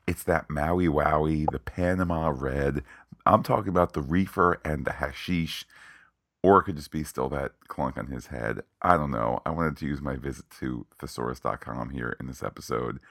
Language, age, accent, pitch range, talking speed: English, 40-59, American, 75-95 Hz, 190 wpm